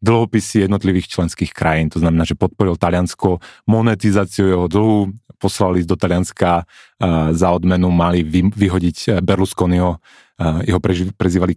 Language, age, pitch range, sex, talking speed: Czech, 30-49, 90-105 Hz, male, 135 wpm